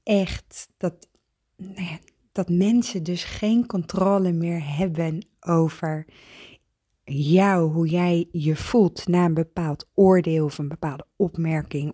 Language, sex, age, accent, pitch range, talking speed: Dutch, female, 20-39, Dutch, 155-185 Hz, 115 wpm